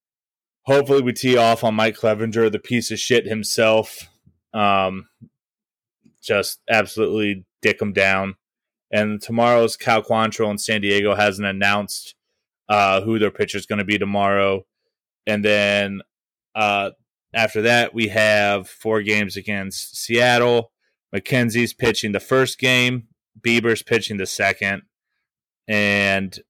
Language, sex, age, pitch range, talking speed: English, male, 30-49, 100-115 Hz, 130 wpm